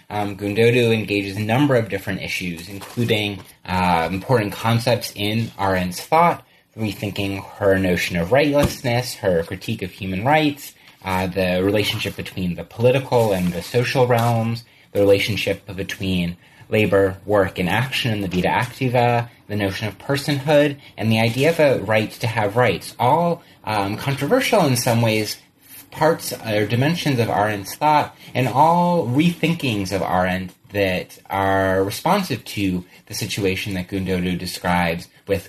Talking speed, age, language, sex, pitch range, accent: 145 wpm, 30-49, English, male, 95-125 Hz, American